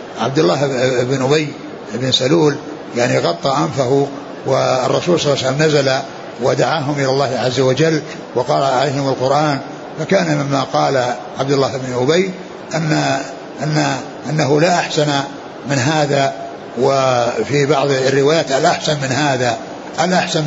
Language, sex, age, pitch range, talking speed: Arabic, male, 60-79, 135-160 Hz, 125 wpm